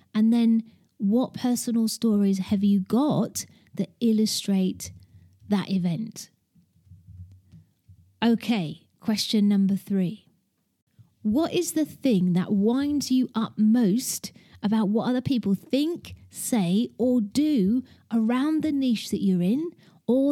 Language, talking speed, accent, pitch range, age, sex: English, 120 wpm, British, 185-245 Hz, 30-49, female